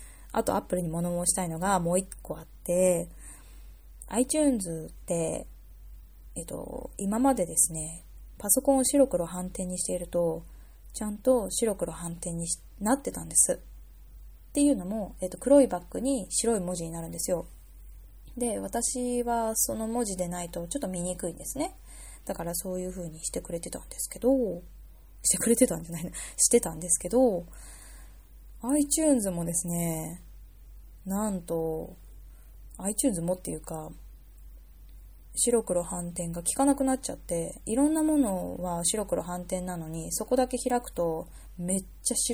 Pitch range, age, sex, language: 165-225 Hz, 20-39, female, Japanese